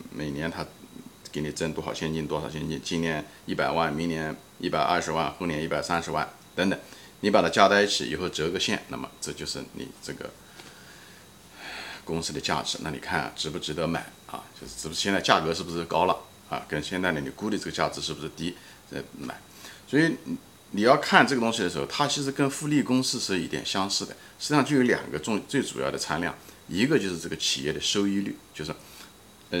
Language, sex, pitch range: Chinese, male, 80-125 Hz